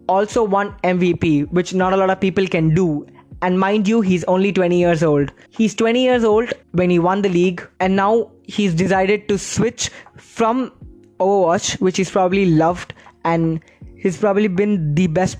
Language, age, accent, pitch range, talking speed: English, 20-39, Indian, 165-195 Hz, 180 wpm